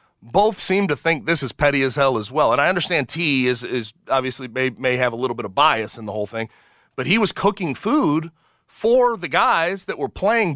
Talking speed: 235 wpm